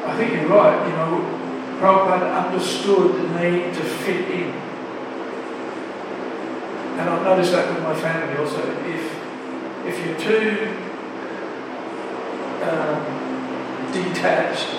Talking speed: 110 wpm